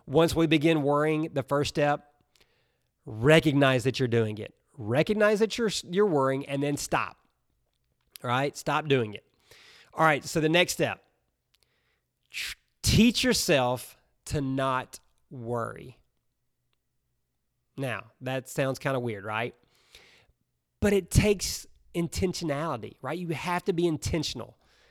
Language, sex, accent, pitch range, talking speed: English, male, American, 125-160 Hz, 130 wpm